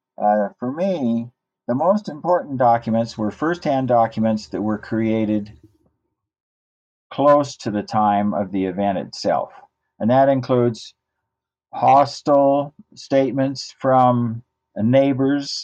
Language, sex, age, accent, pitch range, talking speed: English, male, 50-69, American, 105-135 Hz, 105 wpm